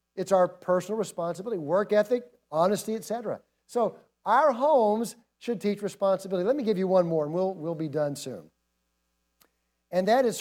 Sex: male